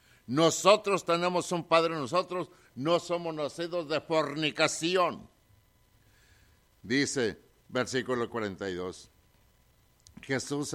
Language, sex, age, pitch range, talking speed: English, male, 60-79, 125-180 Hz, 80 wpm